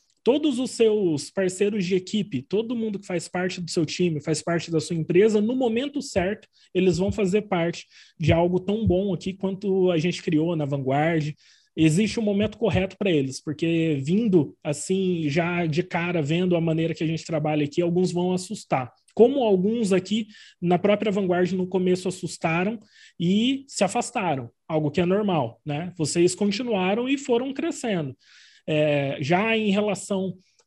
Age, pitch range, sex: 20-39, 165-200 Hz, male